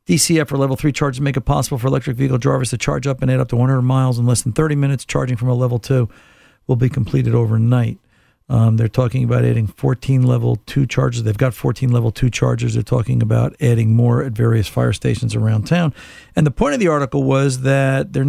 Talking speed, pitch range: 230 wpm, 125-145 Hz